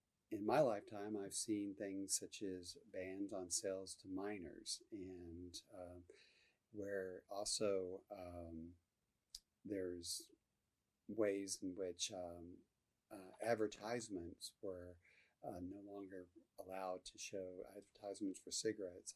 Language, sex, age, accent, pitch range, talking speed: English, male, 40-59, American, 90-105 Hz, 110 wpm